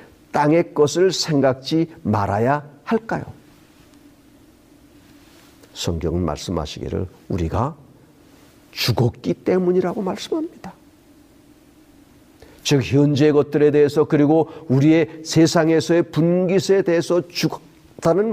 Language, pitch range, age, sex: Korean, 100-160 Hz, 50-69, male